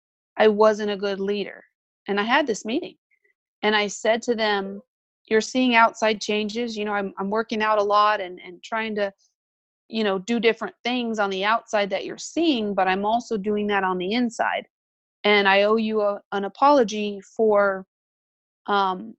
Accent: American